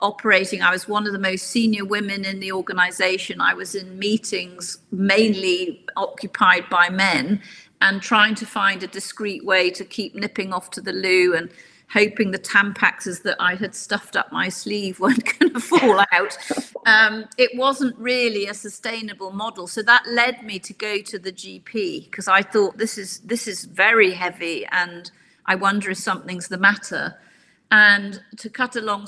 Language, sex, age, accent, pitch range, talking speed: English, female, 50-69, British, 185-215 Hz, 175 wpm